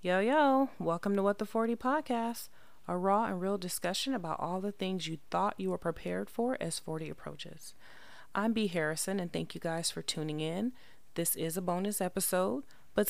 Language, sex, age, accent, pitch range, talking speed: English, female, 30-49, American, 160-195 Hz, 190 wpm